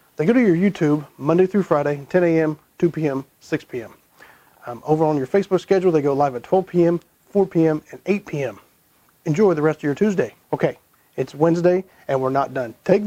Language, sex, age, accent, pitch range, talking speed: English, male, 40-59, American, 145-185 Hz, 200 wpm